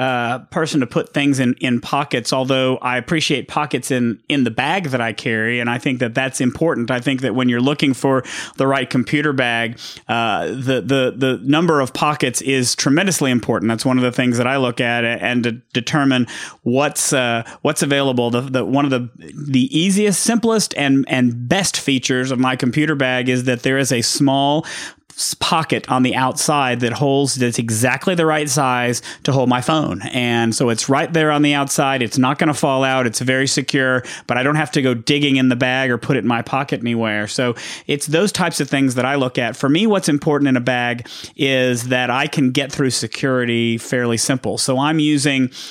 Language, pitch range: English, 125-145 Hz